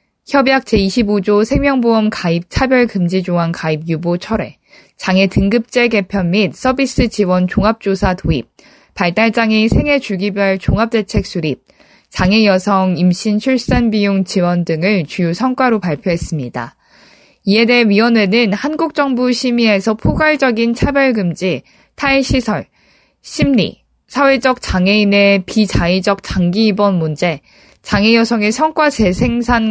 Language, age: Korean, 20-39